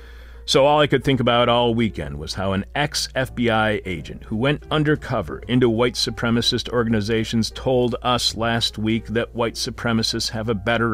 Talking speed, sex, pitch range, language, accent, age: 165 wpm, male, 90-125 Hz, English, American, 40-59